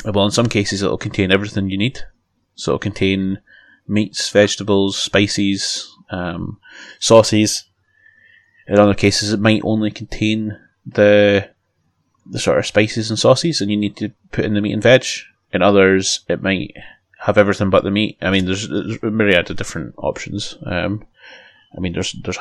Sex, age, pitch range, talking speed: male, 20-39, 95-110 Hz, 170 wpm